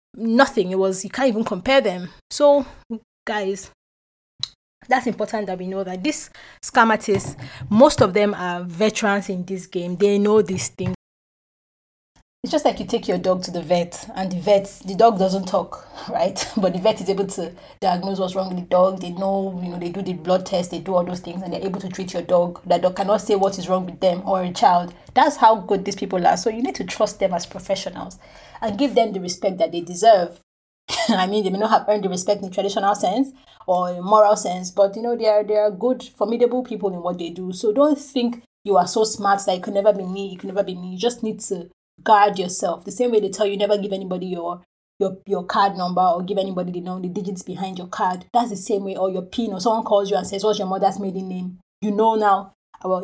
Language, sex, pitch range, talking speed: English, female, 185-215 Hz, 245 wpm